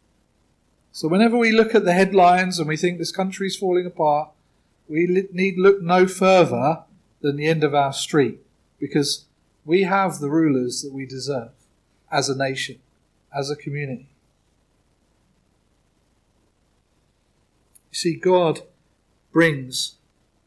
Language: English